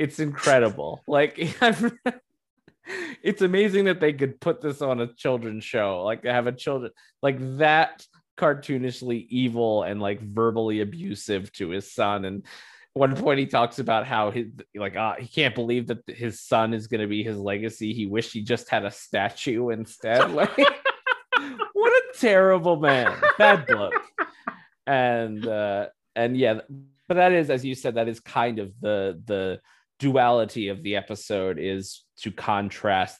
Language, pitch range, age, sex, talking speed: English, 100-130 Hz, 20-39, male, 160 wpm